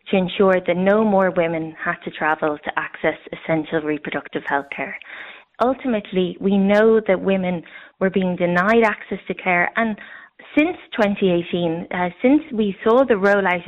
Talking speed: 155 wpm